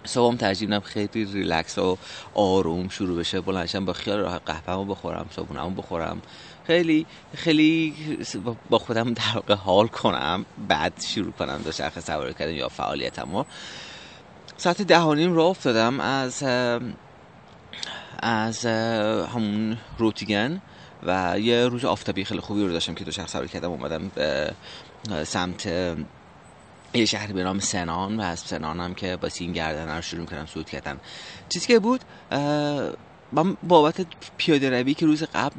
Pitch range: 90-120 Hz